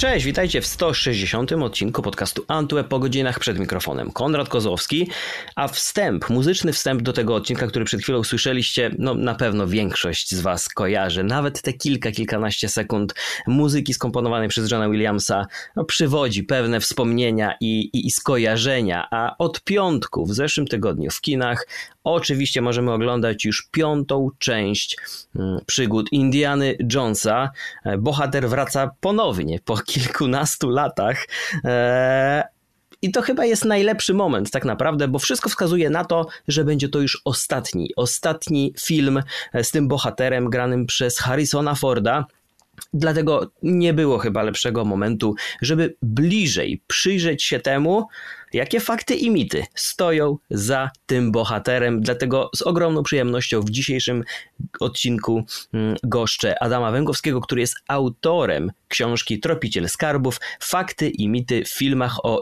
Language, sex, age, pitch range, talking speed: Polish, male, 30-49, 110-145 Hz, 135 wpm